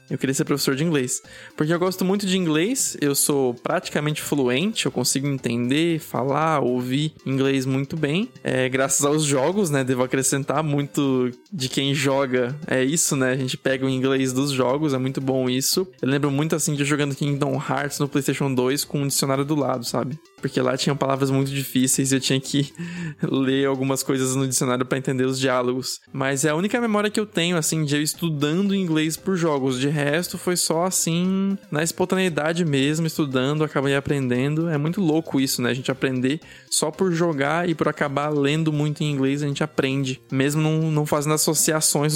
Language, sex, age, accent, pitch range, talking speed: Portuguese, male, 20-39, Brazilian, 135-155 Hz, 195 wpm